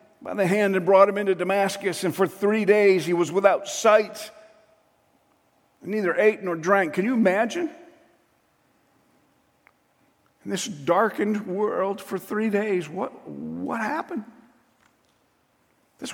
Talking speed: 130 wpm